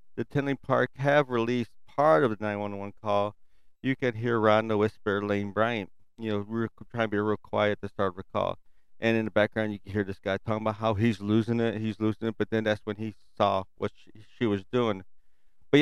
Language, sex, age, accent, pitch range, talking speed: English, male, 40-59, American, 105-125 Hz, 230 wpm